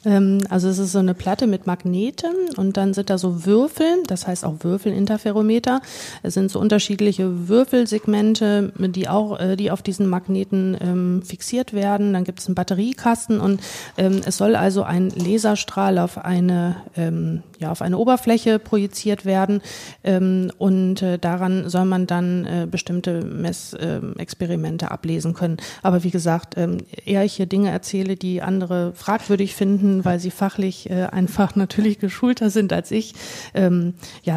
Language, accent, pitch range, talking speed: German, German, 185-210 Hz, 155 wpm